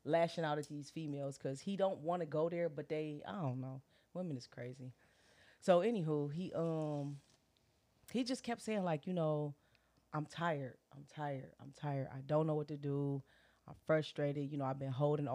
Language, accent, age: English, American, 30-49